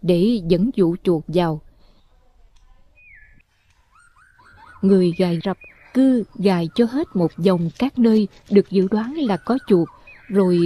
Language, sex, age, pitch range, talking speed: Vietnamese, female, 20-39, 175-240 Hz, 130 wpm